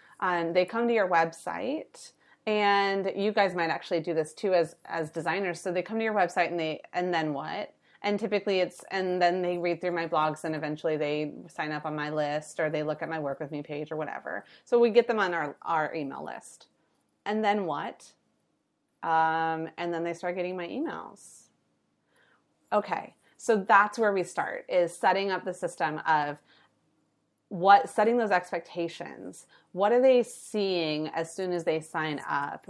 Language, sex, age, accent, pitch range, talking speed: English, female, 30-49, American, 160-195 Hz, 190 wpm